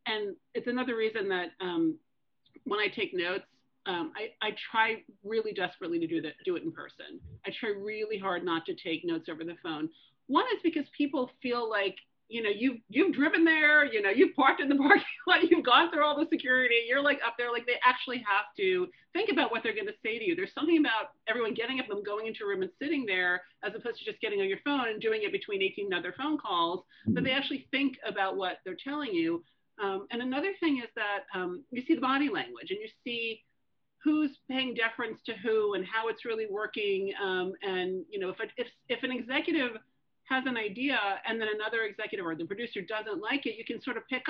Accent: American